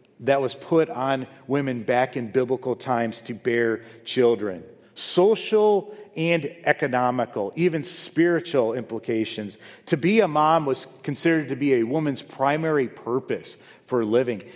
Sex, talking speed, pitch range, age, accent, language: male, 130 wpm, 110-140 Hz, 40-59, American, English